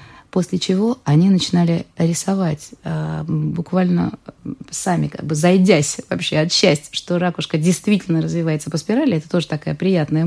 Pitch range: 155-200 Hz